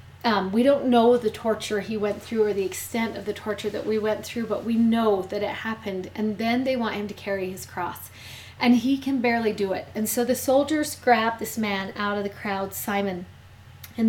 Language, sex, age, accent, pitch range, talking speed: English, female, 30-49, American, 200-245 Hz, 225 wpm